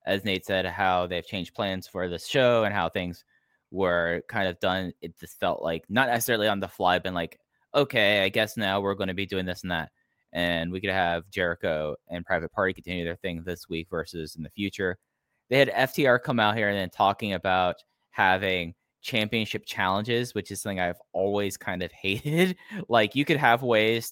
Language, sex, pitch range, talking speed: English, male, 90-105 Hz, 205 wpm